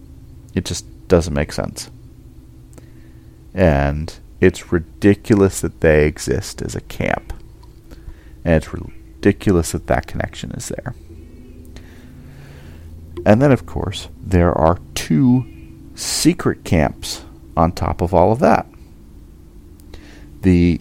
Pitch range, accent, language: 75-85 Hz, American, English